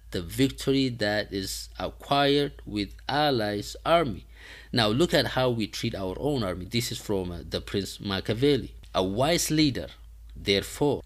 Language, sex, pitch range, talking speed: English, male, 100-140 Hz, 150 wpm